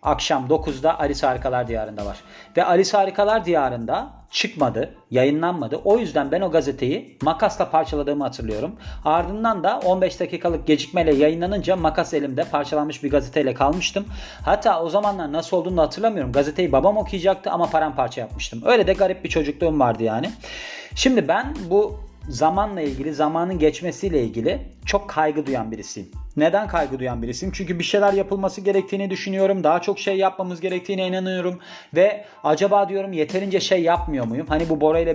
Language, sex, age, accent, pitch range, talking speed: Turkish, male, 40-59, native, 140-185 Hz, 155 wpm